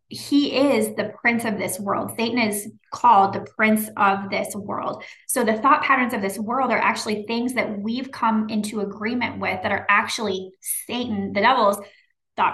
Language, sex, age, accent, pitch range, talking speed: English, female, 20-39, American, 200-225 Hz, 180 wpm